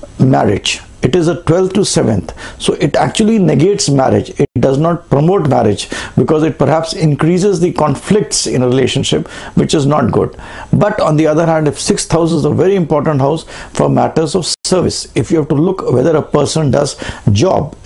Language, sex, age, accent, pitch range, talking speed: English, male, 60-79, Indian, 140-170 Hz, 185 wpm